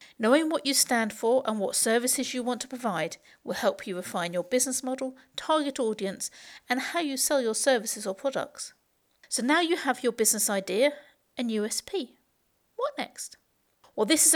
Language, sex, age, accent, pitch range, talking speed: English, female, 50-69, British, 205-265 Hz, 180 wpm